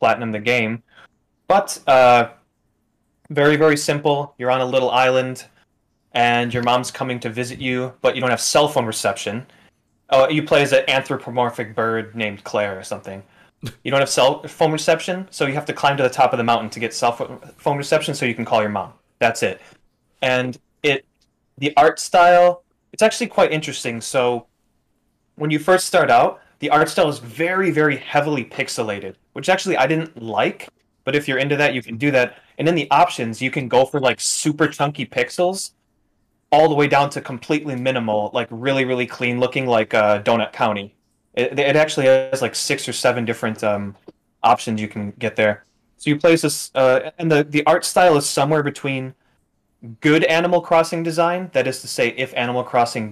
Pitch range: 115-150 Hz